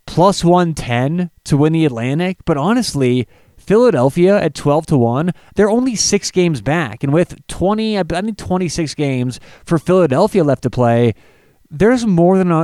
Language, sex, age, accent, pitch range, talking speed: English, male, 30-49, American, 135-180 Hz, 150 wpm